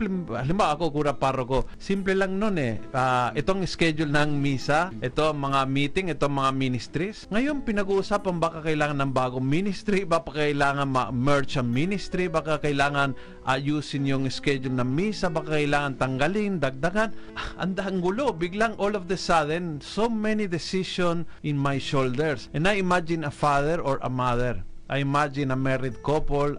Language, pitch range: Filipino, 135-175 Hz